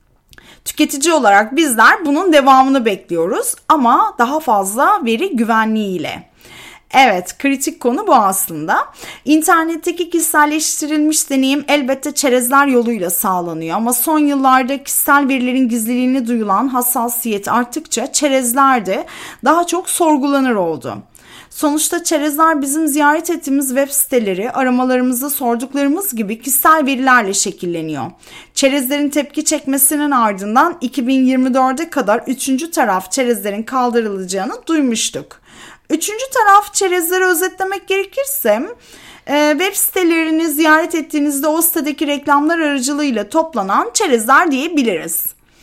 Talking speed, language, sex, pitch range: 105 wpm, Turkish, female, 240-315 Hz